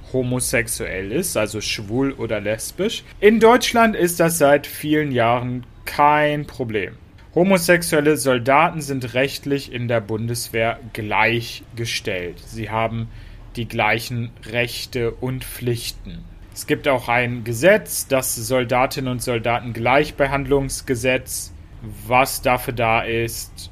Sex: male